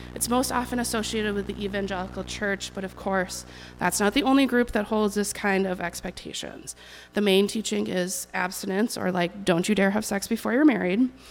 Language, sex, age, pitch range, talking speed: English, female, 30-49, 190-230 Hz, 195 wpm